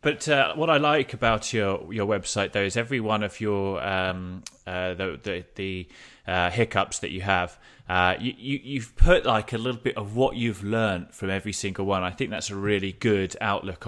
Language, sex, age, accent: English, male, 20-39, British